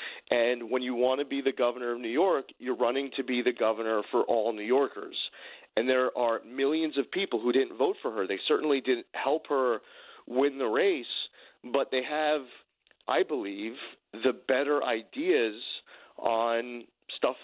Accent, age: American, 40-59